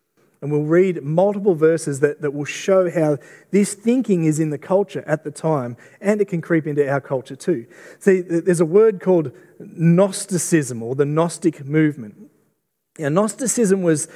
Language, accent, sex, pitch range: English, Australian, male, 150-190 Hz